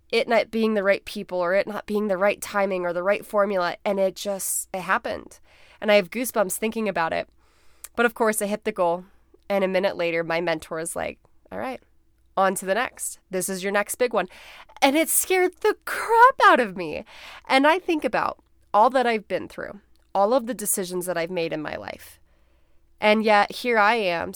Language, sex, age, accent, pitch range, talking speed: English, female, 20-39, American, 185-235 Hz, 215 wpm